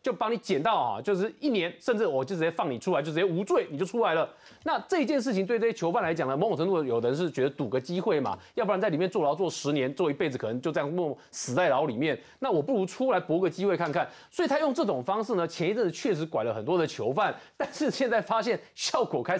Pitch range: 180-270 Hz